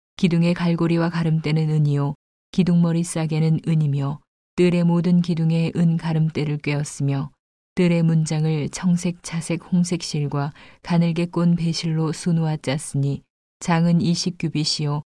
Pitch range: 155-175 Hz